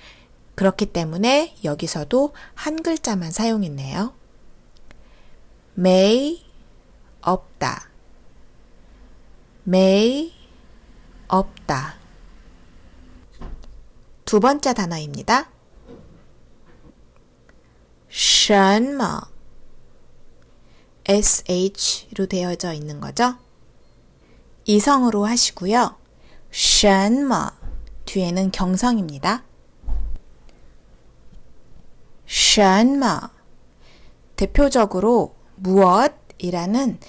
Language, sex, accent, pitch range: Korean, female, native, 185-245 Hz